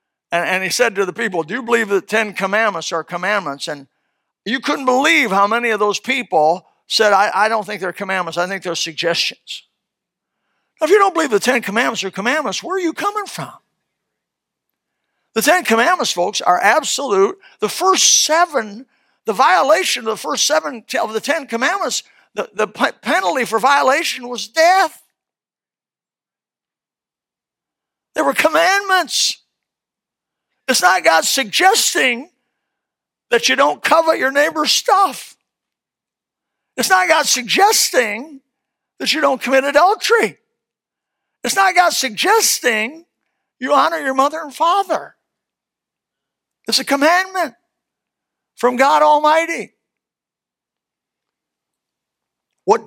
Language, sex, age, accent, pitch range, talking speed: English, male, 60-79, American, 205-320 Hz, 130 wpm